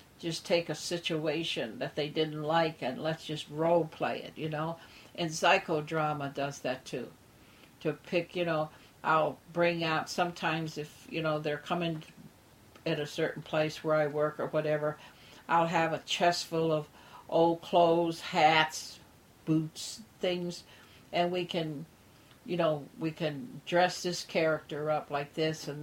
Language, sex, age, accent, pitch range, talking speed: English, female, 60-79, American, 145-170 Hz, 160 wpm